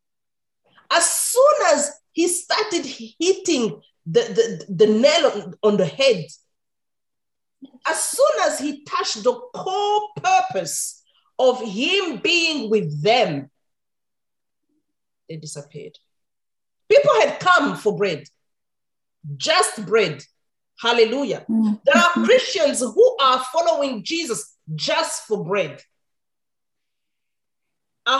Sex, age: female, 40-59